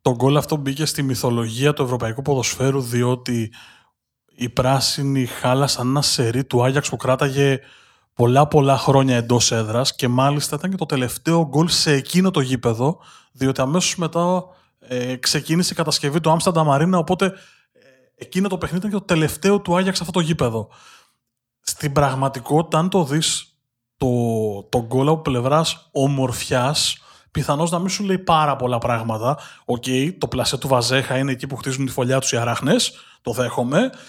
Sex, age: male, 20-39